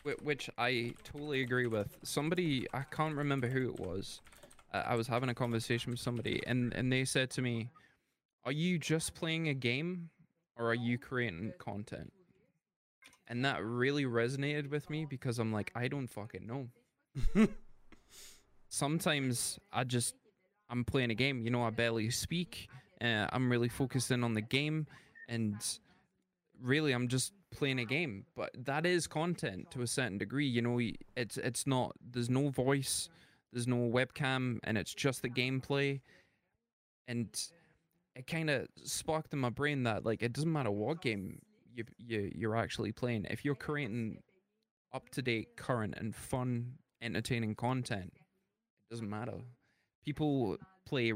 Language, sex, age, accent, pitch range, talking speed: English, male, 20-39, Australian, 115-140 Hz, 155 wpm